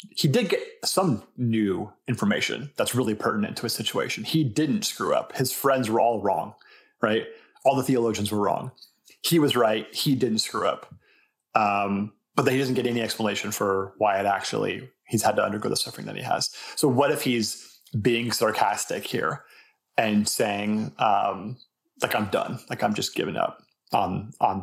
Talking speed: 185 wpm